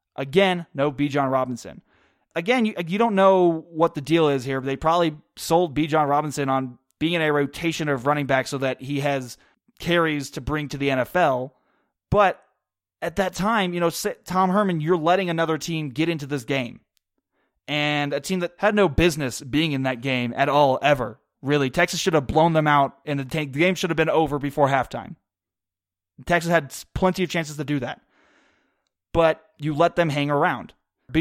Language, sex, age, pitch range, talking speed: English, male, 20-39, 140-170 Hz, 195 wpm